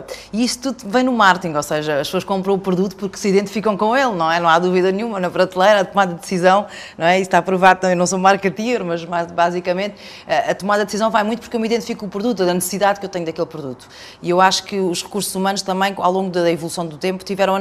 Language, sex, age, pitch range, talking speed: Portuguese, female, 20-39, 165-195 Hz, 265 wpm